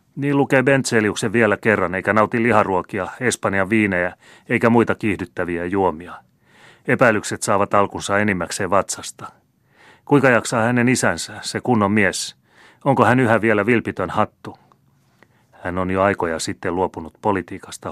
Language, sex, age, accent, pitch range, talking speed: Finnish, male, 30-49, native, 90-115 Hz, 130 wpm